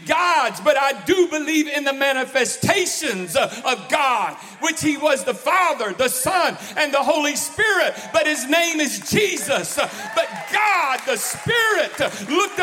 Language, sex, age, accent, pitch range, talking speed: English, male, 50-69, American, 240-330 Hz, 145 wpm